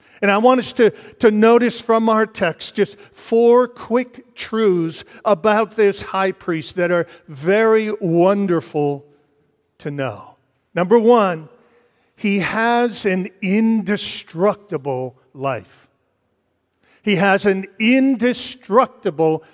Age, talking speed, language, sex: 50-69, 110 wpm, English, male